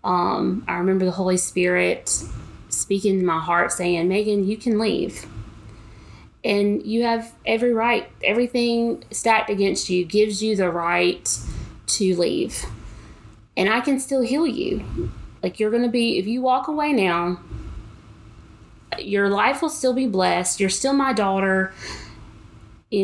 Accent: American